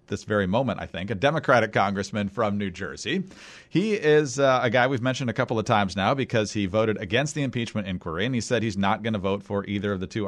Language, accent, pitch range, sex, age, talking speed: English, American, 105-140 Hz, male, 40-59, 250 wpm